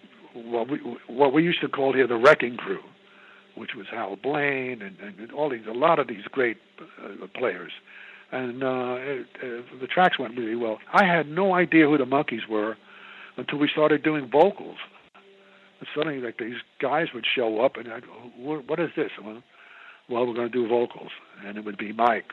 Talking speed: 195 wpm